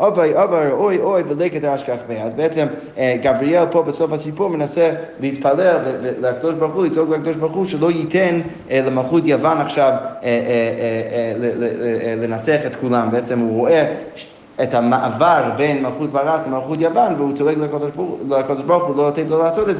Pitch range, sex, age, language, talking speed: 130-175 Hz, male, 20-39, Hebrew, 150 wpm